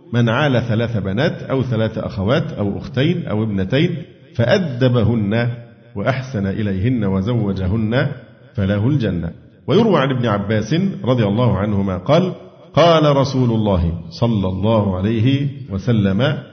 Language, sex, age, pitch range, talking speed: Arabic, male, 50-69, 105-135 Hz, 115 wpm